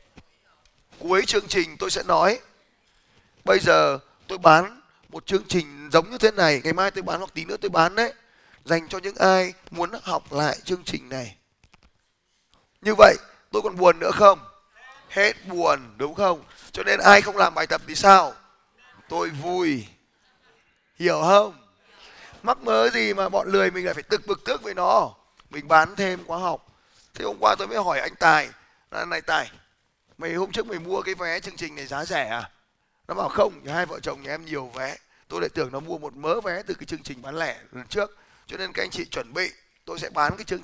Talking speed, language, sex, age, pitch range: 210 wpm, Vietnamese, male, 20-39, 155-205 Hz